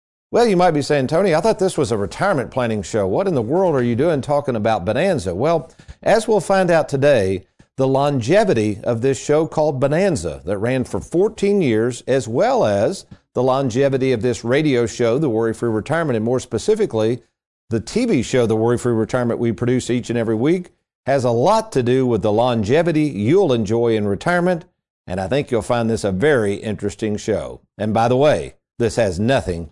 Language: English